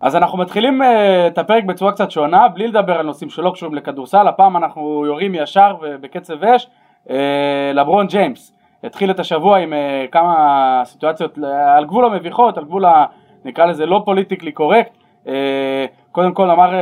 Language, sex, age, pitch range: English, male, 20-39, 135-195 Hz